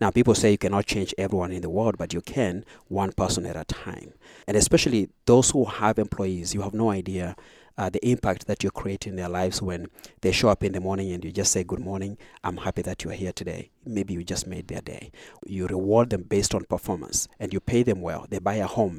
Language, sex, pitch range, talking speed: English, male, 95-110 Hz, 245 wpm